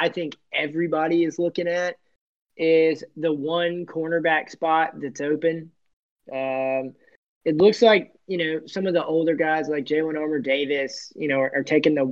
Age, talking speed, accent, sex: 20-39, 170 wpm, American, male